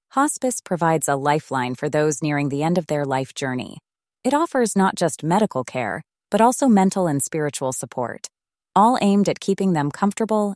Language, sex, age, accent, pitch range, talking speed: English, female, 20-39, American, 160-215 Hz, 175 wpm